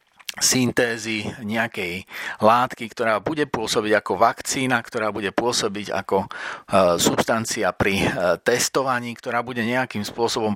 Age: 40-59